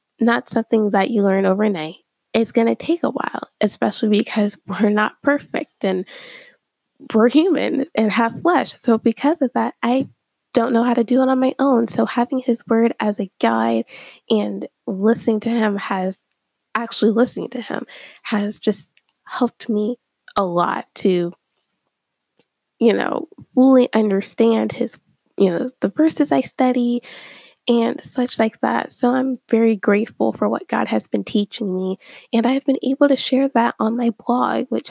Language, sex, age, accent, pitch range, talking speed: English, female, 10-29, American, 210-260 Hz, 165 wpm